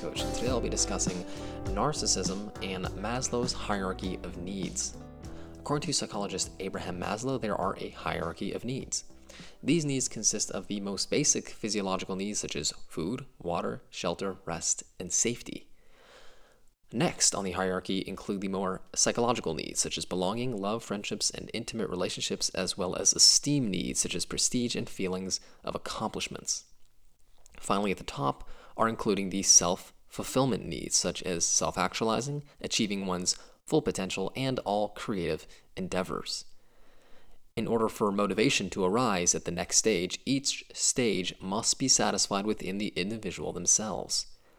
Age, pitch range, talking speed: 20-39, 90-115 Hz, 145 wpm